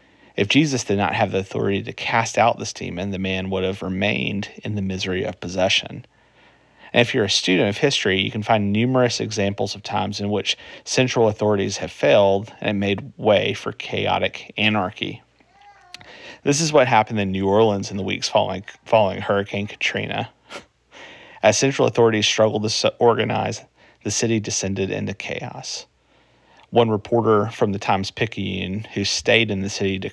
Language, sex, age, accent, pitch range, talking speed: English, male, 40-59, American, 95-115 Hz, 165 wpm